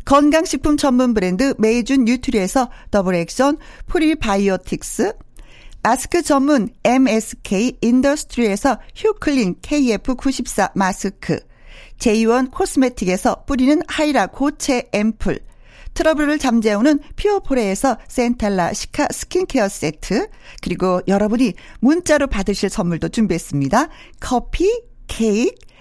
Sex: female